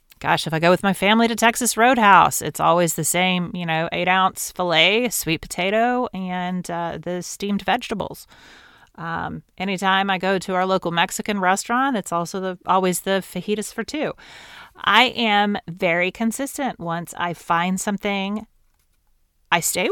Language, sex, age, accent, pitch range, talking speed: English, female, 30-49, American, 170-215 Hz, 160 wpm